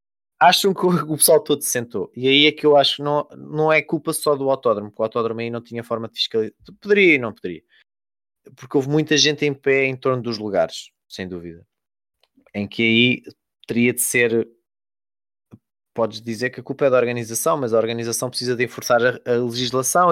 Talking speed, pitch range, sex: 205 wpm, 115-150 Hz, male